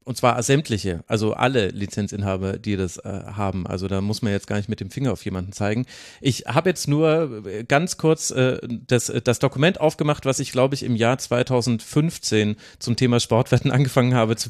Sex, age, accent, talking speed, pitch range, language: male, 30-49, German, 200 wpm, 115-140 Hz, German